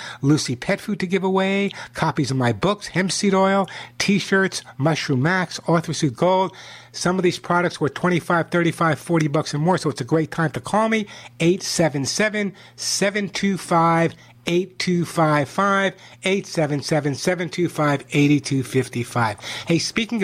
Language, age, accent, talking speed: English, 60-79, American, 140 wpm